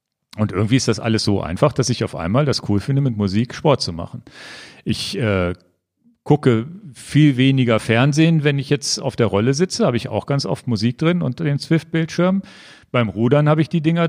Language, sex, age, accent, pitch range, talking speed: German, male, 40-59, German, 110-150 Hz, 210 wpm